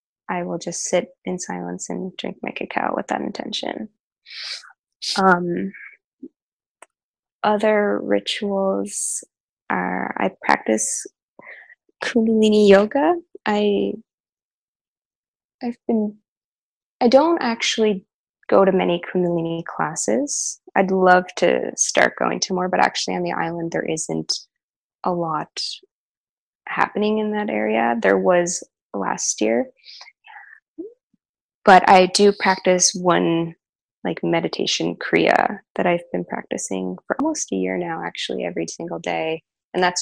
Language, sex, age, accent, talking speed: English, female, 20-39, American, 120 wpm